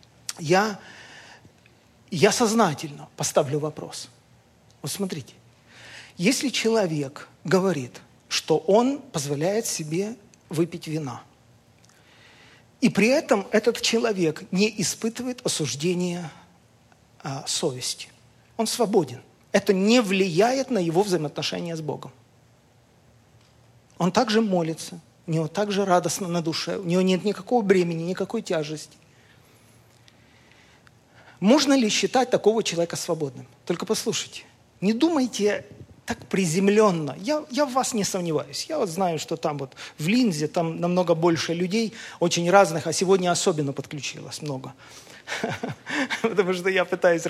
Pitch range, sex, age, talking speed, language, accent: 150-210 Hz, male, 40-59, 120 wpm, Russian, native